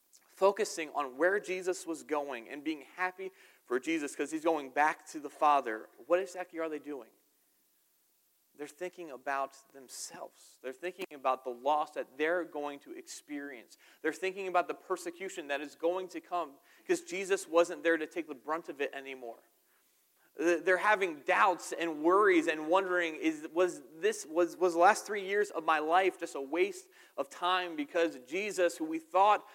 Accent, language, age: American, English, 30-49